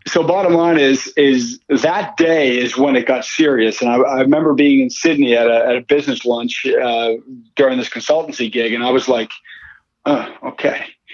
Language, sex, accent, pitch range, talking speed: English, male, American, 125-170 Hz, 195 wpm